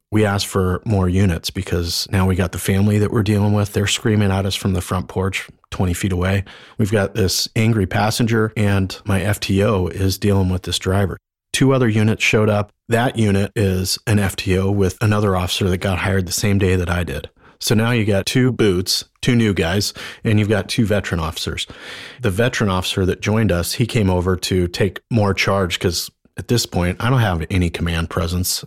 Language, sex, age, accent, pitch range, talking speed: English, male, 30-49, American, 95-110 Hz, 205 wpm